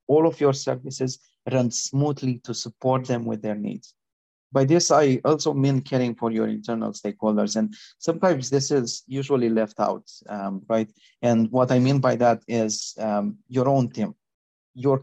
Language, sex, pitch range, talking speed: English, male, 110-135 Hz, 170 wpm